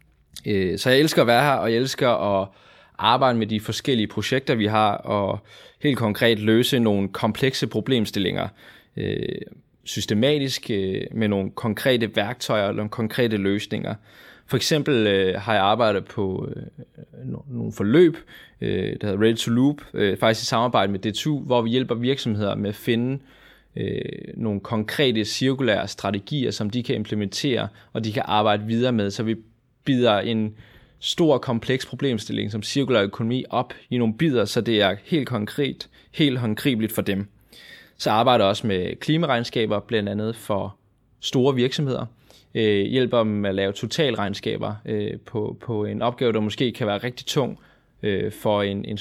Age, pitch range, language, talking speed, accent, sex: 20-39, 105-125 Hz, Danish, 150 wpm, native, male